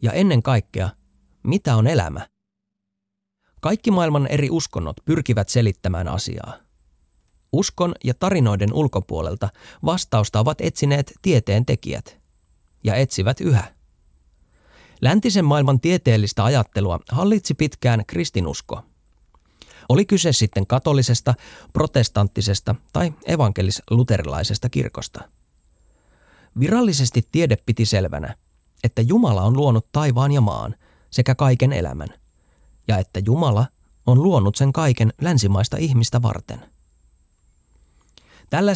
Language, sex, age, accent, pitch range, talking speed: Finnish, male, 30-49, native, 95-140 Hz, 100 wpm